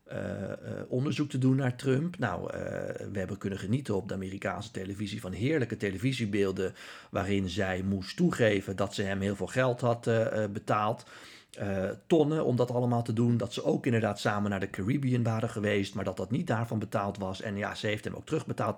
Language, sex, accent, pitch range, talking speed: Dutch, male, Dutch, 100-120 Hz, 210 wpm